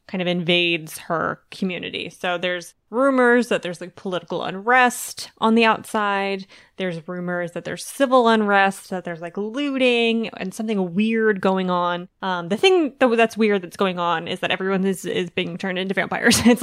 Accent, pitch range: American, 180-220 Hz